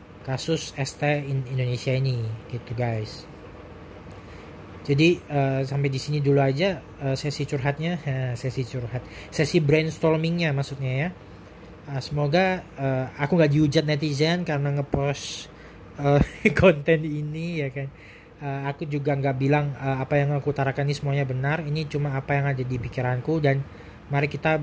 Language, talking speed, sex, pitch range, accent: Indonesian, 150 wpm, male, 130-150 Hz, native